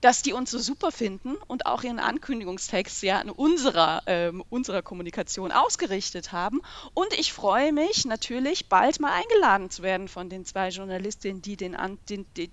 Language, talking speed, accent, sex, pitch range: German, 175 wpm, German, female, 190-260 Hz